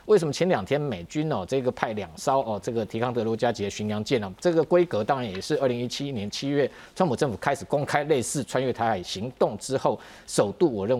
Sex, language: male, Chinese